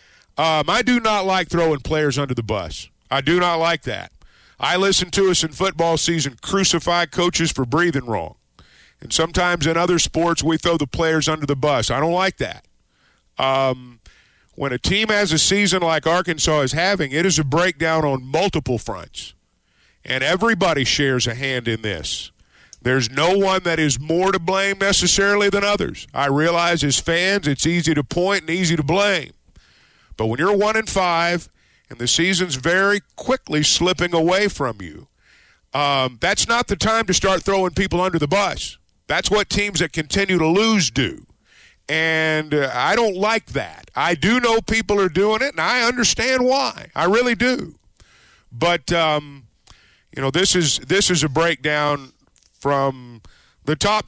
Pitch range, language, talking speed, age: 140-190 Hz, English, 175 wpm, 50-69